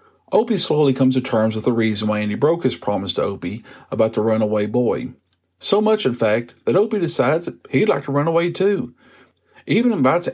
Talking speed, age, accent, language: 210 wpm, 50-69, American, English